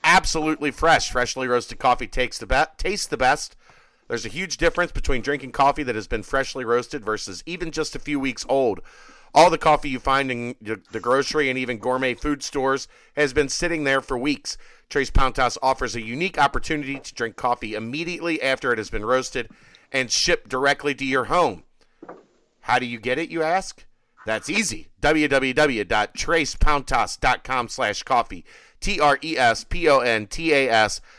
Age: 40-59